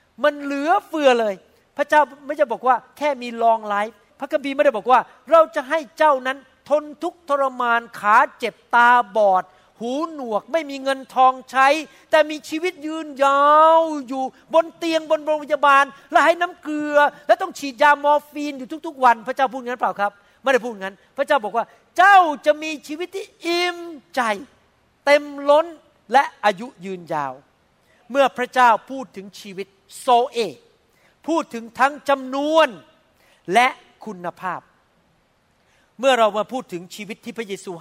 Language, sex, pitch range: Thai, male, 200-290 Hz